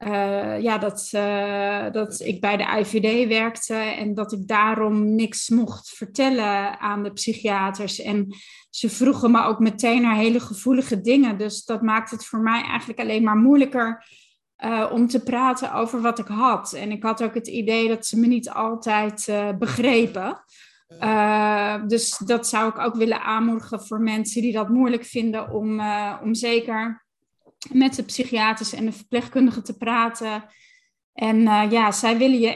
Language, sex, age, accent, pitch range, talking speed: Dutch, female, 20-39, Dutch, 210-240 Hz, 170 wpm